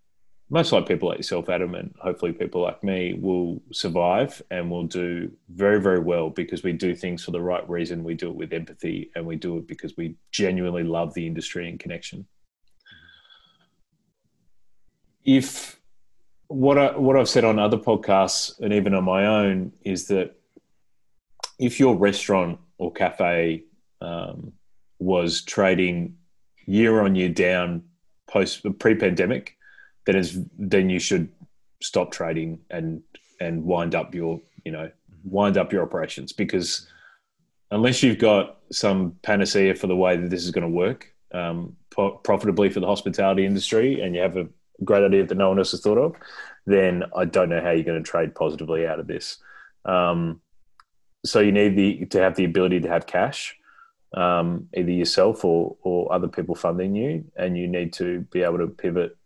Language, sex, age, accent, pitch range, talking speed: English, male, 30-49, Australian, 85-100 Hz, 170 wpm